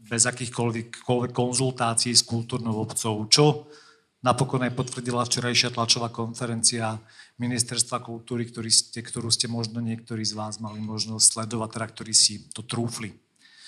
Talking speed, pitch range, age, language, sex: 135 wpm, 120-135 Hz, 40-59, Slovak, male